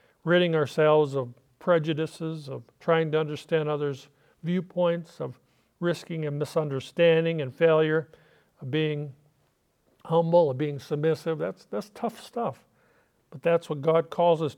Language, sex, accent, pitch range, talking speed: English, male, American, 145-175 Hz, 130 wpm